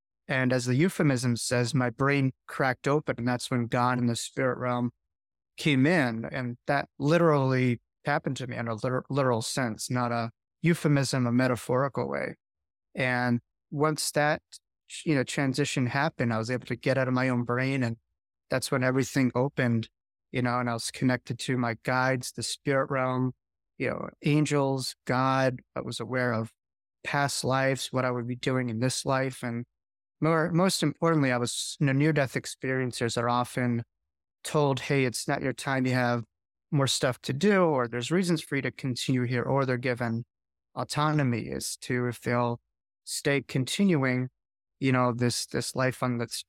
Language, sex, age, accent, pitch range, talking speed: English, male, 30-49, American, 120-135 Hz, 175 wpm